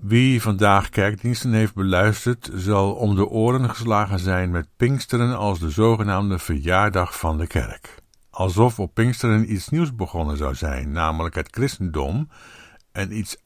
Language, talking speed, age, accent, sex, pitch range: Dutch, 145 wpm, 60-79, Dutch, male, 90-115 Hz